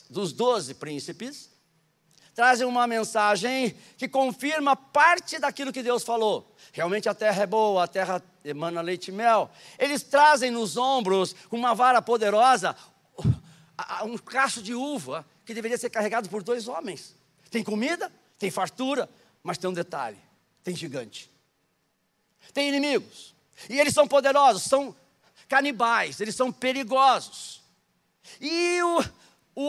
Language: Portuguese